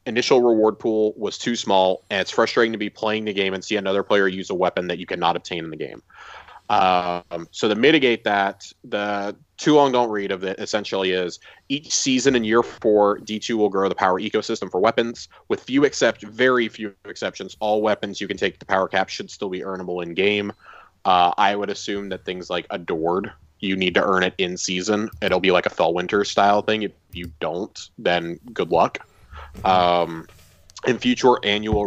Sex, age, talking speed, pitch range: male, 20-39, 190 wpm, 95-115 Hz